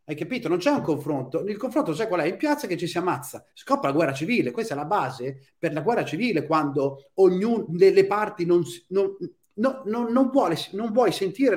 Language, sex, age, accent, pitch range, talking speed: Italian, male, 30-49, native, 140-210 Hz, 220 wpm